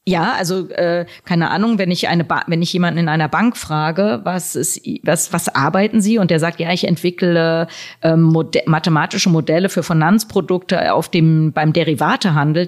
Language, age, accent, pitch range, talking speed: German, 30-49, German, 155-190 Hz, 170 wpm